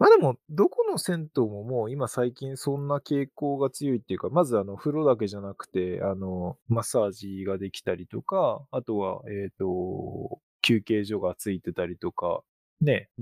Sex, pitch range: male, 95-150 Hz